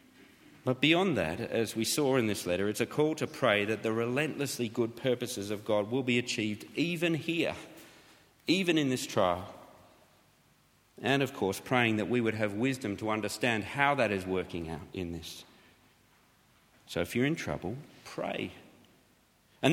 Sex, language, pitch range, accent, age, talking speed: male, English, 115-165 Hz, Australian, 40-59, 165 wpm